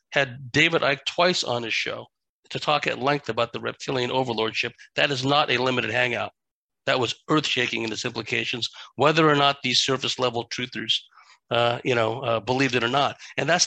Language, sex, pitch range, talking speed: English, male, 120-150 Hz, 200 wpm